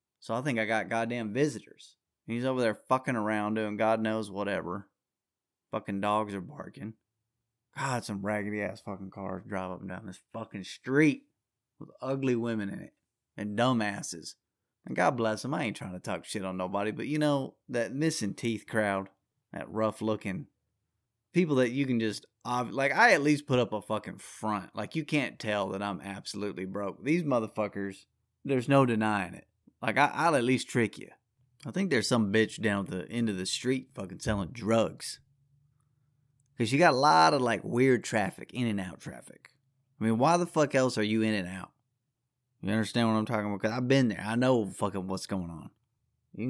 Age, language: 30-49, English